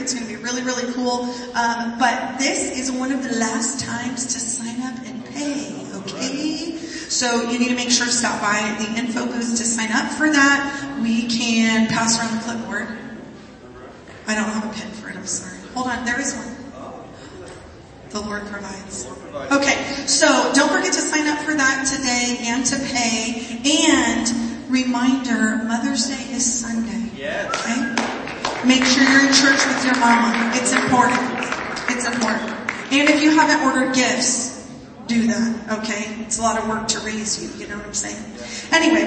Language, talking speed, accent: English, 180 wpm, American